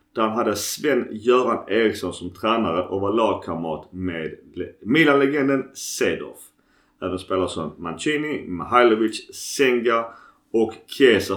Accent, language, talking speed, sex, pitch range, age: native, Swedish, 105 wpm, male, 100-145 Hz, 30-49